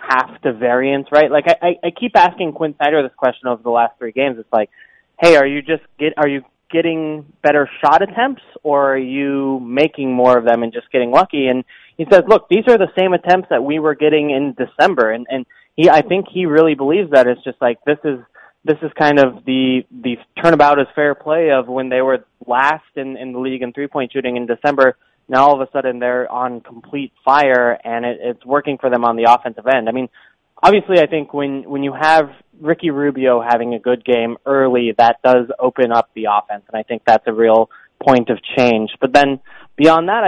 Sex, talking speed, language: male, 225 wpm, English